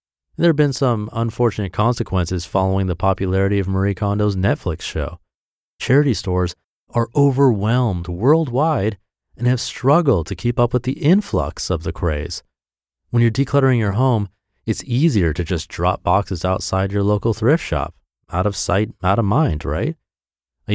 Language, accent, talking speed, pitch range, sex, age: English, American, 160 wpm, 85-120 Hz, male, 30-49